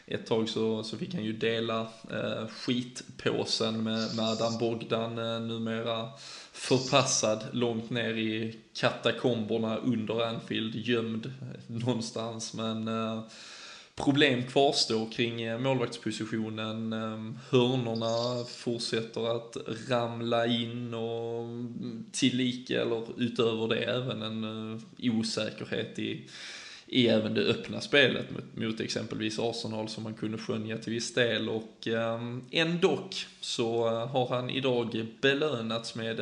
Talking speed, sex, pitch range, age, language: 110 wpm, male, 110-120 Hz, 20-39, Swedish